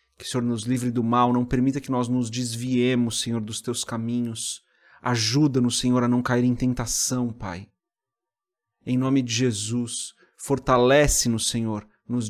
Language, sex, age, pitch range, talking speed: Portuguese, male, 30-49, 120-130 Hz, 155 wpm